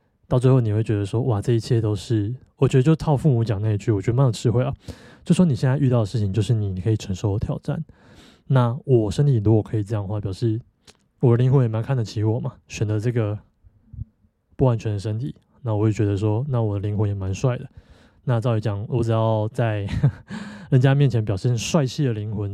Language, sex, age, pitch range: Chinese, male, 20-39, 110-140 Hz